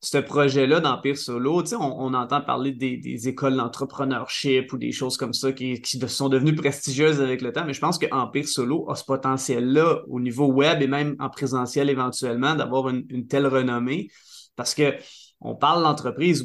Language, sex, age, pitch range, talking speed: French, male, 20-39, 130-150 Hz, 195 wpm